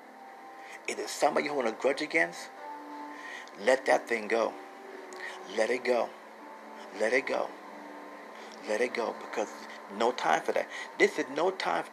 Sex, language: male, English